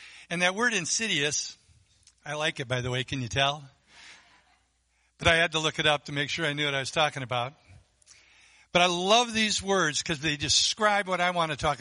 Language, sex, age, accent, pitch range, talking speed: English, male, 60-79, American, 100-170 Hz, 220 wpm